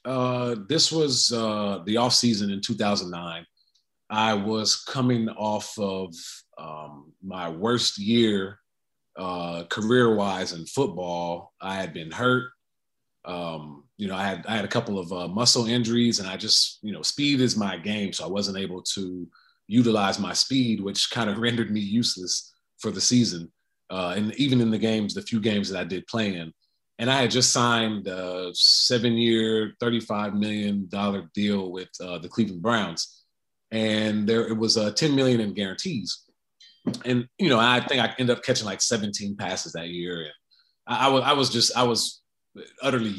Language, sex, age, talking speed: English, male, 30-49, 180 wpm